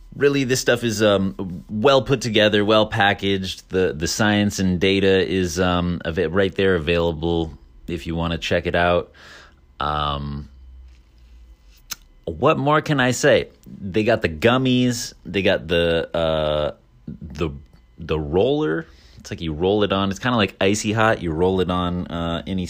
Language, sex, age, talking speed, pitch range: English, male, 30-49, 165 wpm, 85-105 Hz